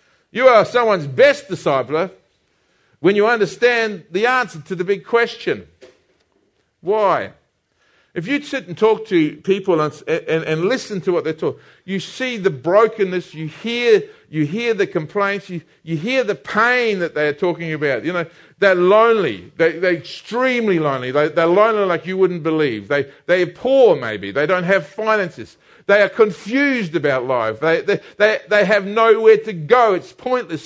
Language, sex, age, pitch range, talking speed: English, male, 50-69, 175-235 Hz, 170 wpm